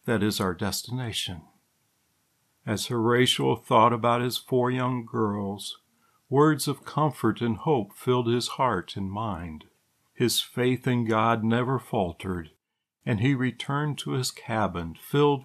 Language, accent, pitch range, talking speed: English, American, 100-125 Hz, 135 wpm